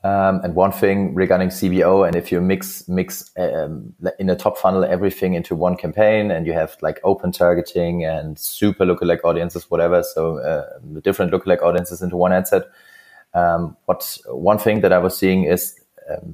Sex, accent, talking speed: male, German, 185 wpm